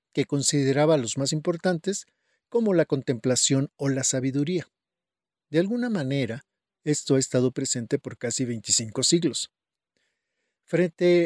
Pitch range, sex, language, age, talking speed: 135-180 Hz, male, Spanish, 50-69, 125 wpm